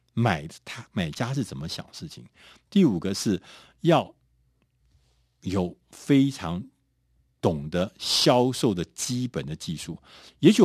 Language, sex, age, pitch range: Chinese, male, 50-69, 85-125 Hz